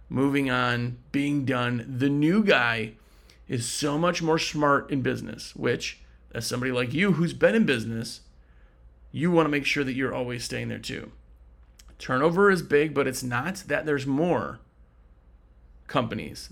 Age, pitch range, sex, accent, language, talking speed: 30-49, 115-155 Hz, male, American, English, 155 wpm